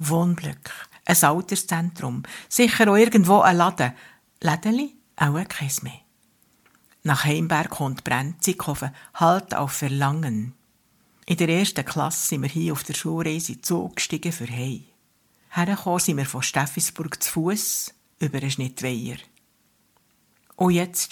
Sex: female